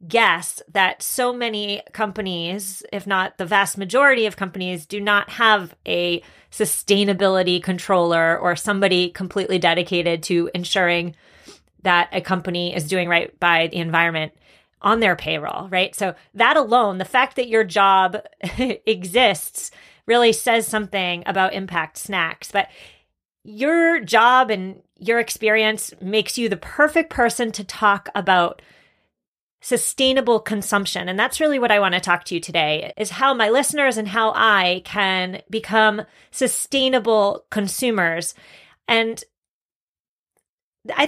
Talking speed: 135 wpm